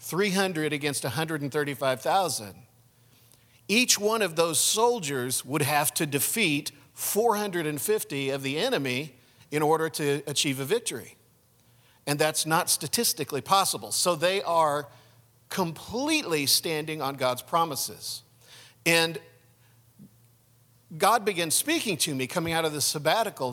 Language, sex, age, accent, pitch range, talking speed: English, male, 50-69, American, 125-165 Hz, 115 wpm